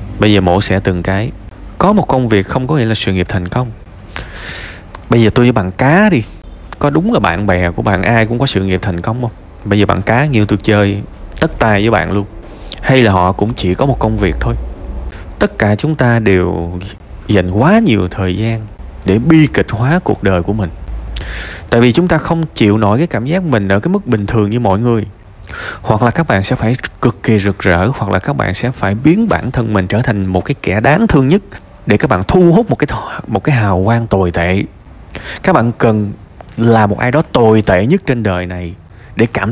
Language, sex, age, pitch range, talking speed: Vietnamese, male, 20-39, 95-125 Hz, 235 wpm